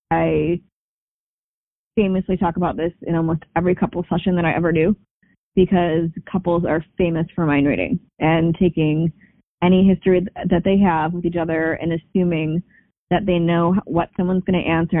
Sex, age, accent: female, 20-39, American